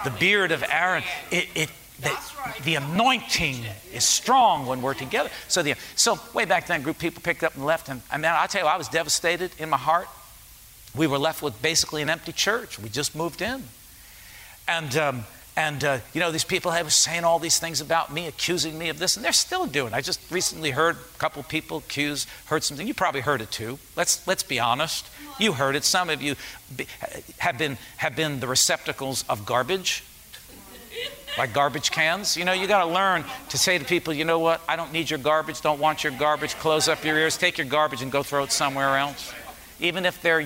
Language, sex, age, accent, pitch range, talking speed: English, male, 50-69, American, 130-165 Hz, 220 wpm